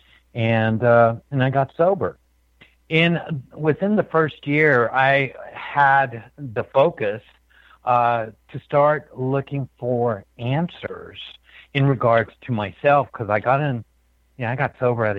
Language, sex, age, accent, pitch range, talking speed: English, male, 60-79, American, 100-130 Hz, 140 wpm